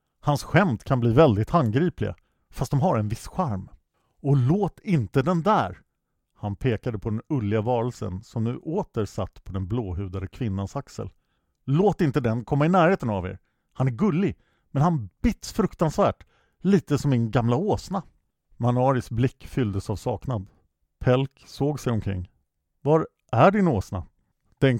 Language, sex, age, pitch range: English, male, 50-69, 105-145 Hz